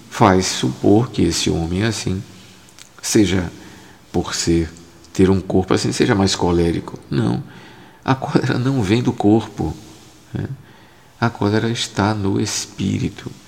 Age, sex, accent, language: 50-69, male, Brazilian, Portuguese